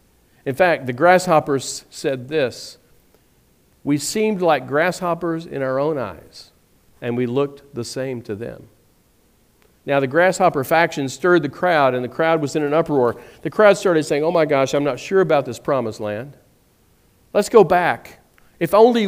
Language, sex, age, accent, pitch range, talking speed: English, male, 50-69, American, 130-175 Hz, 170 wpm